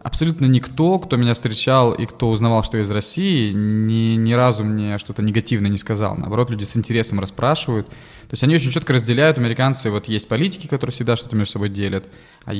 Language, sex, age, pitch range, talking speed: Russian, male, 20-39, 105-130 Hz, 200 wpm